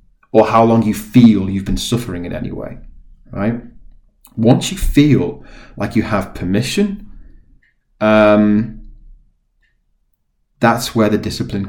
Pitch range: 100-130 Hz